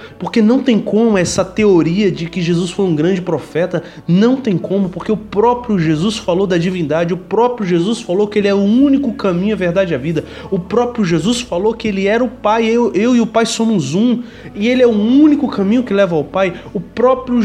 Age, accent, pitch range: 20-39, Brazilian, 160-225 Hz